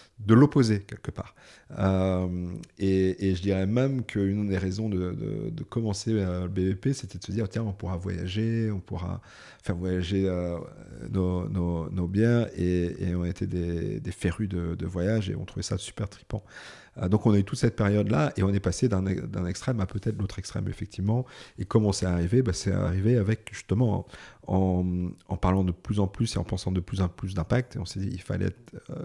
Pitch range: 95-110 Hz